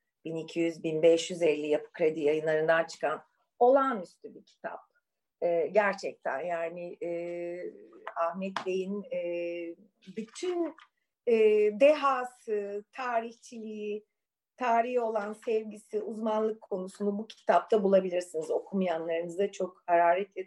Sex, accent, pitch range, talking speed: female, native, 175-230 Hz, 90 wpm